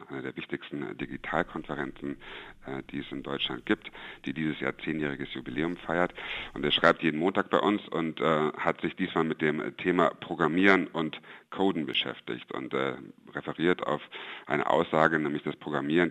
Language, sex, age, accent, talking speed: German, male, 60-79, German, 160 wpm